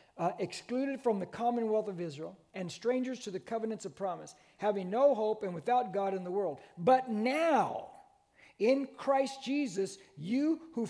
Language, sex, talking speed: English, male, 165 wpm